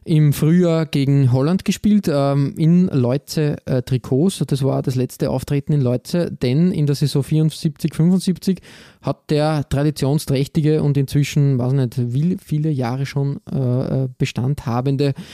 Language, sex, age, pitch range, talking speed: German, male, 20-39, 130-160 Hz, 135 wpm